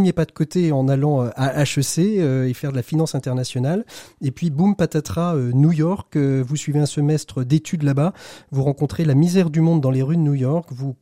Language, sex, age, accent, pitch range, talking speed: French, male, 30-49, French, 135-160 Hz, 205 wpm